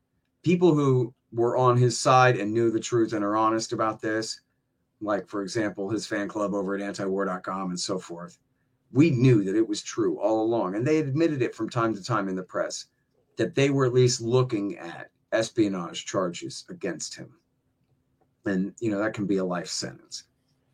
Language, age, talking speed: English, 40-59, 190 wpm